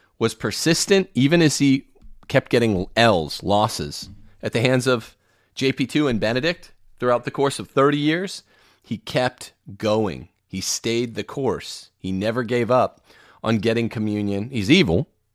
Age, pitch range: 40-59, 105-130 Hz